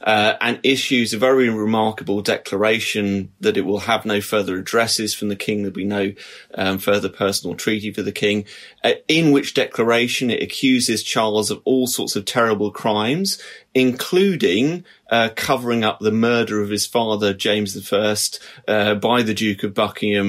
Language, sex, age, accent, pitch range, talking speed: English, male, 30-49, British, 100-115 Hz, 165 wpm